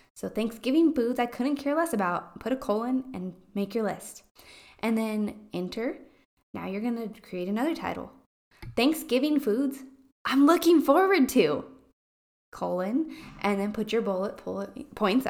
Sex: female